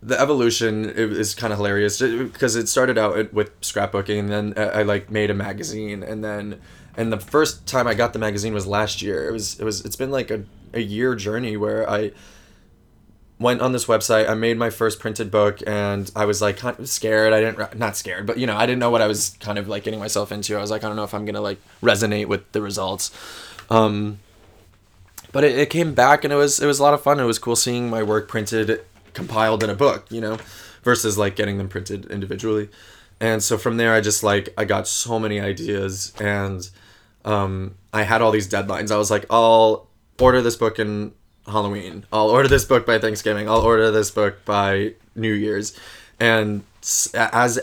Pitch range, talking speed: 100-115 Hz, 215 wpm